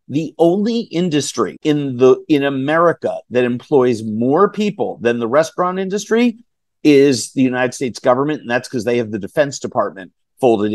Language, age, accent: English, 50-69, American